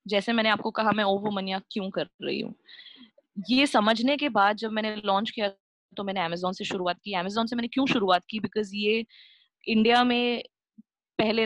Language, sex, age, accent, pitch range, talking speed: Hindi, female, 20-39, native, 195-240 Hz, 190 wpm